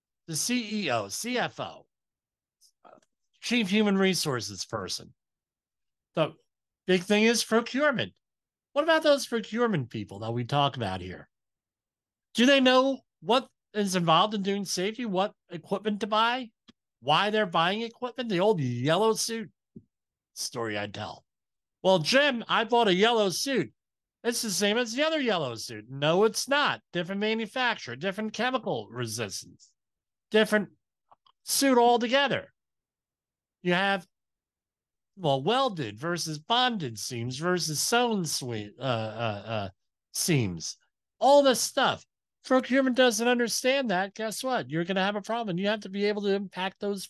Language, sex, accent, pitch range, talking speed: English, male, American, 145-230 Hz, 140 wpm